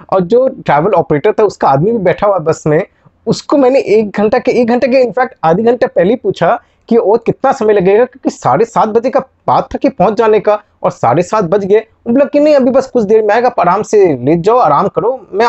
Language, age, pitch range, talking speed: Hindi, 20-39, 175-235 Hz, 245 wpm